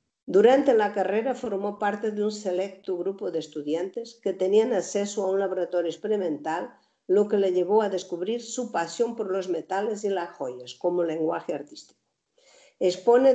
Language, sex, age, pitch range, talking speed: Spanish, female, 50-69, 170-215 Hz, 160 wpm